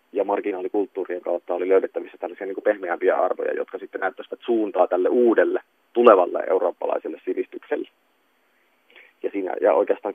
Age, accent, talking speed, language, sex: 30-49, native, 130 wpm, Finnish, male